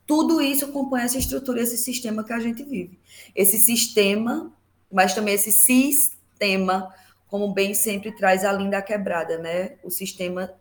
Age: 20-39